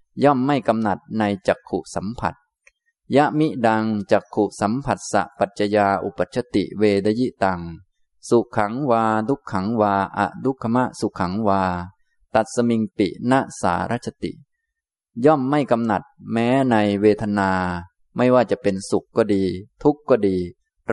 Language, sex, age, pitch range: Thai, male, 20-39, 95-130 Hz